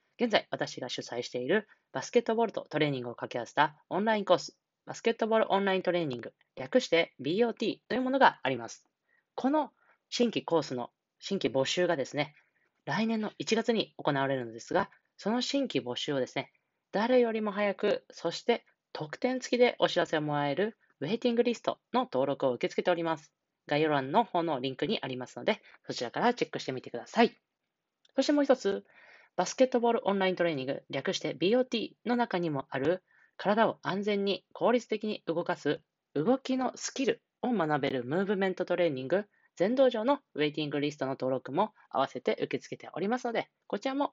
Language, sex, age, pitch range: Japanese, female, 20-39, 145-230 Hz